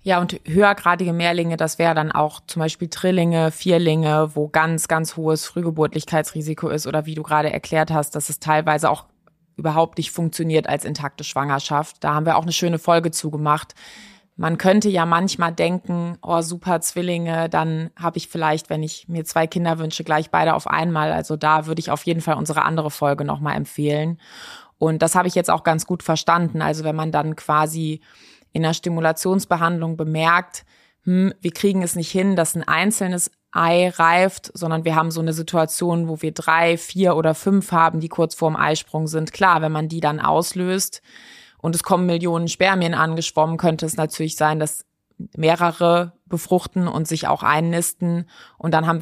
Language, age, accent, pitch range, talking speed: German, 20-39, German, 155-175 Hz, 185 wpm